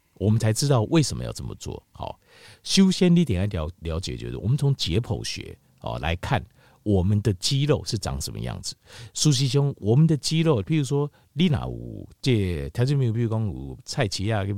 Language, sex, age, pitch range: Chinese, male, 50-69, 90-135 Hz